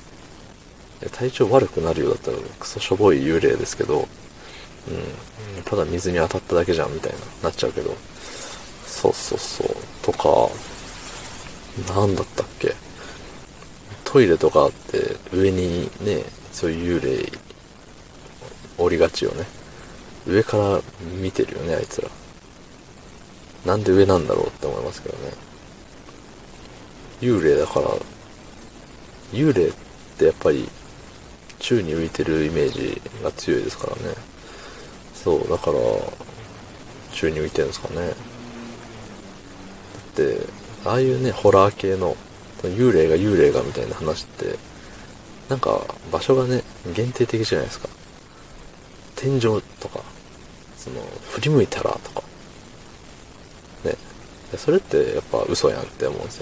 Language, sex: Japanese, male